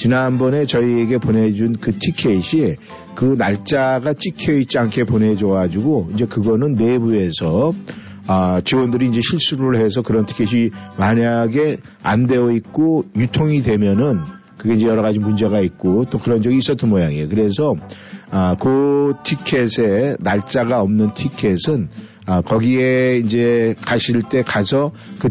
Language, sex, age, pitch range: Korean, male, 50-69, 105-125 Hz